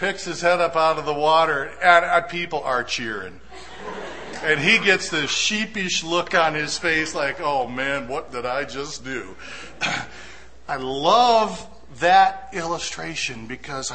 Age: 50-69